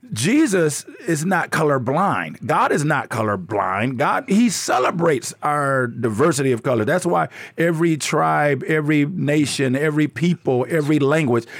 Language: English